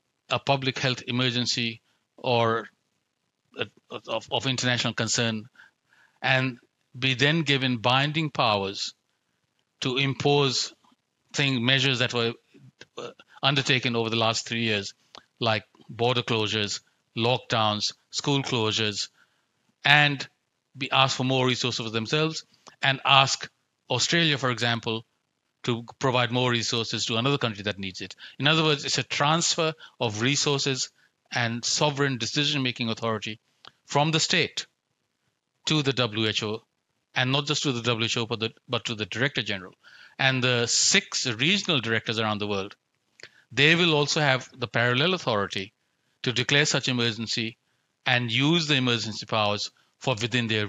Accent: Indian